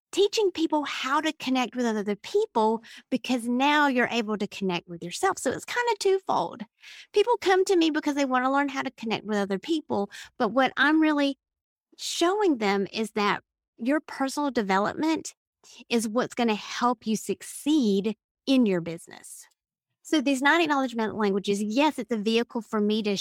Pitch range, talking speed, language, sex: 205-285 Hz, 175 wpm, English, female